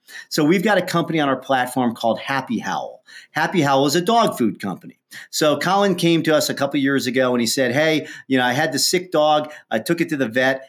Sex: male